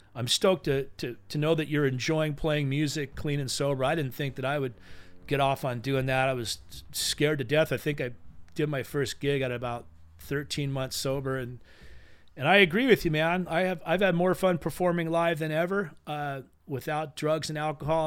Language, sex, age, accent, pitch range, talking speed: English, male, 40-59, American, 130-155 Hz, 210 wpm